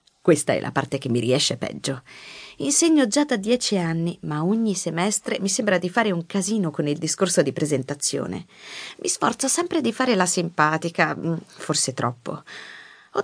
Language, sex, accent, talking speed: Italian, female, native, 170 wpm